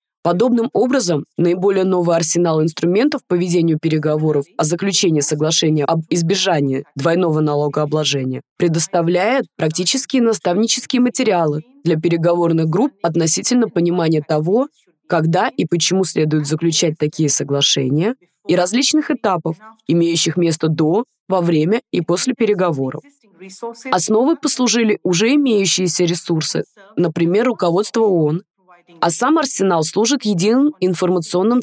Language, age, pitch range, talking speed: English, 20-39, 165-215 Hz, 110 wpm